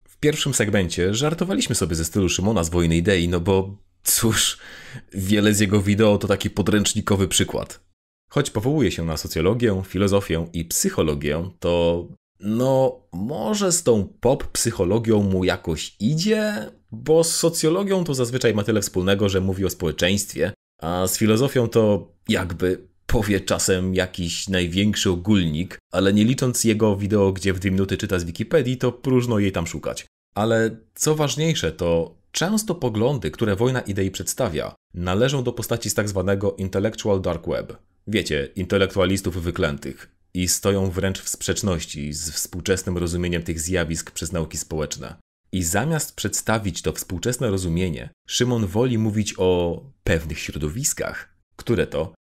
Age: 30-49